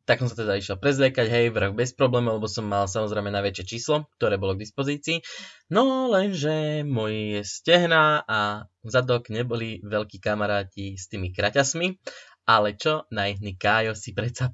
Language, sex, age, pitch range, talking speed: Slovak, male, 20-39, 105-135 Hz, 160 wpm